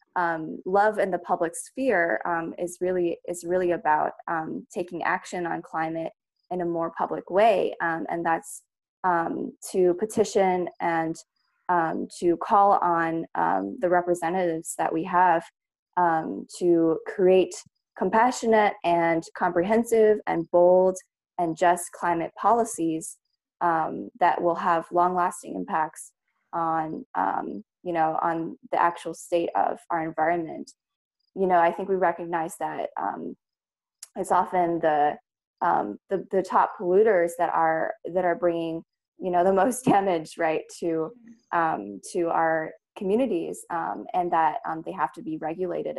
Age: 20-39